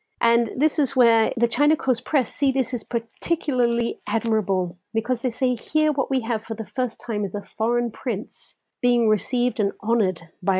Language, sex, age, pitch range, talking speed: English, female, 40-59, 195-245 Hz, 185 wpm